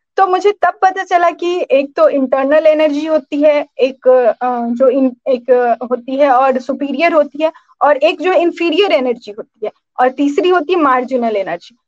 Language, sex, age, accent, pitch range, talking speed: Hindi, female, 20-39, native, 255-350 Hz, 170 wpm